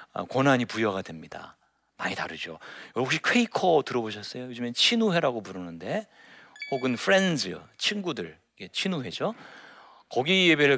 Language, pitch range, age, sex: Korean, 110-170 Hz, 40-59, male